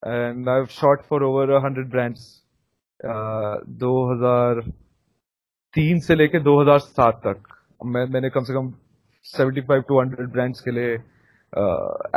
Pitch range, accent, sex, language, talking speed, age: 120-145 Hz, native, male, Hindi, 125 wpm, 30-49